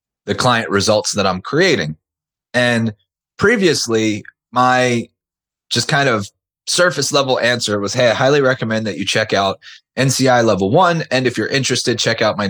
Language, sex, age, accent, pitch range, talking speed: English, male, 20-39, American, 105-130 Hz, 165 wpm